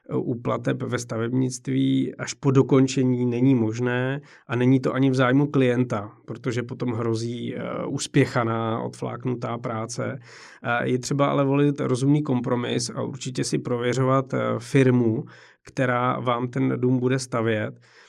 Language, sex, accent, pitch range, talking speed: Czech, male, native, 115-135 Hz, 125 wpm